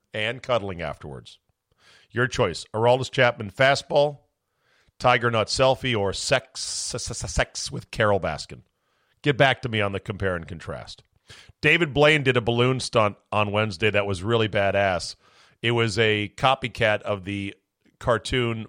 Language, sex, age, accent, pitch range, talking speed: English, male, 40-59, American, 100-120 Hz, 150 wpm